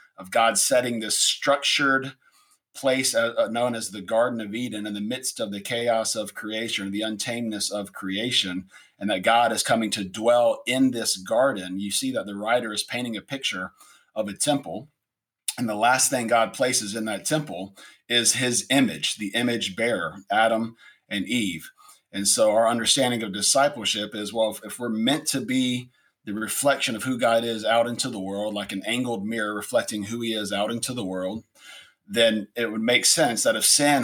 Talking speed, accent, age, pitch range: 190 wpm, American, 40-59, 105-125 Hz